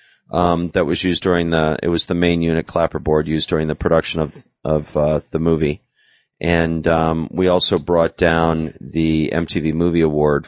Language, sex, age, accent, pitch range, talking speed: English, male, 30-49, American, 80-100 Hz, 180 wpm